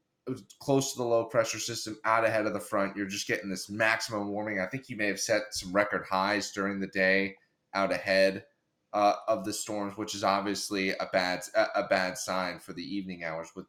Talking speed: 210 wpm